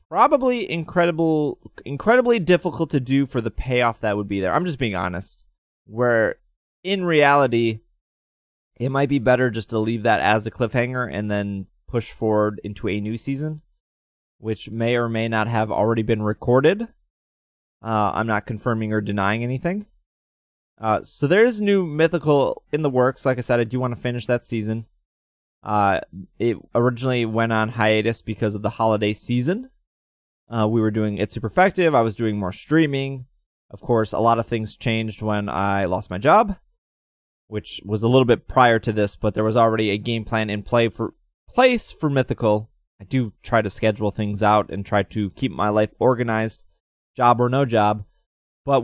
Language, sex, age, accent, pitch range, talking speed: English, male, 20-39, American, 105-130 Hz, 185 wpm